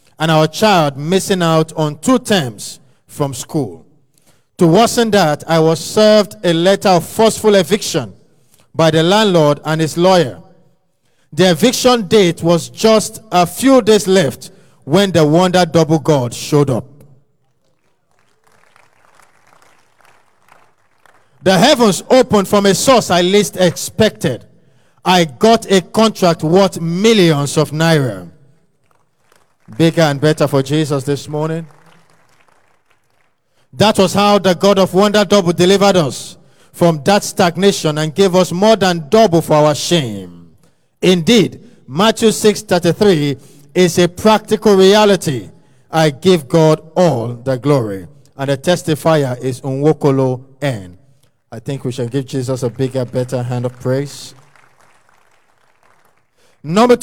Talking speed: 130 wpm